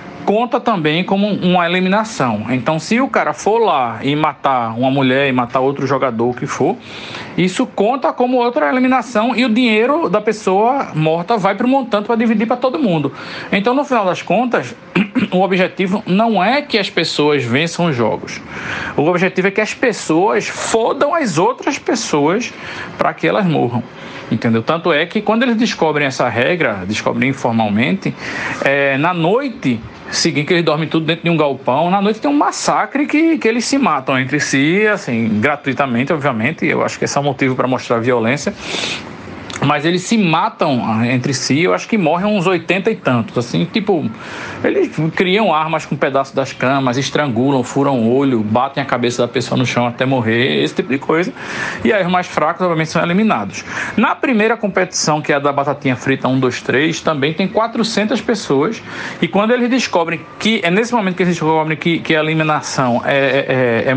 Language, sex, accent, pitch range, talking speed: Portuguese, male, Brazilian, 135-215 Hz, 190 wpm